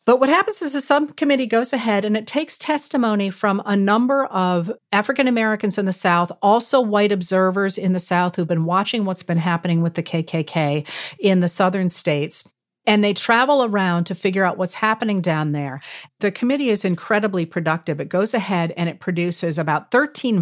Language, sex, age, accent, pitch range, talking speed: English, female, 40-59, American, 180-235 Hz, 185 wpm